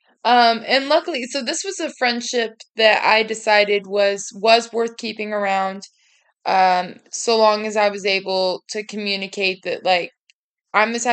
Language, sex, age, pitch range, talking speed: English, female, 20-39, 205-235 Hz, 155 wpm